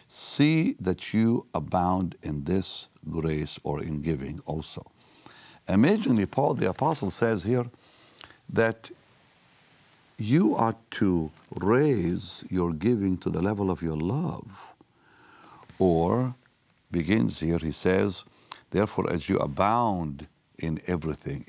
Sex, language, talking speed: male, English, 115 wpm